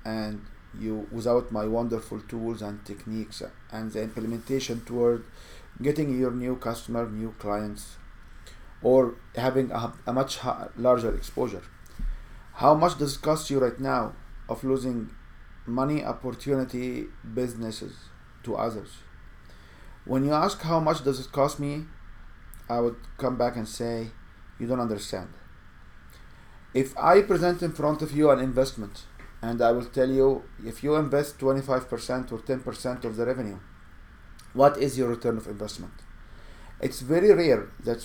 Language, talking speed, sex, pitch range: English, 145 wpm, male, 105-135 Hz